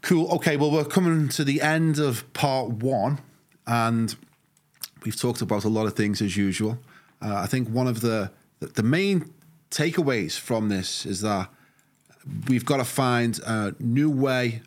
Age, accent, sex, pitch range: 30-49, British, male, 105-130 Hz